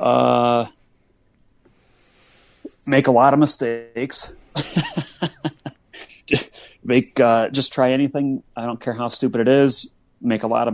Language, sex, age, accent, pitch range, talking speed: English, male, 30-49, American, 105-120 Hz, 125 wpm